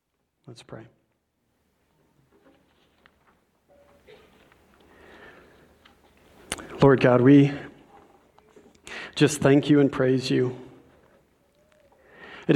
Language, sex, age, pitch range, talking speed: English, male, 40-59, 135-155 Hz, 55 wpm